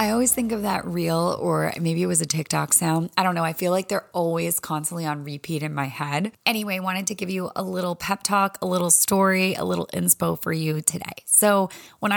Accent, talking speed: American, 230 wpm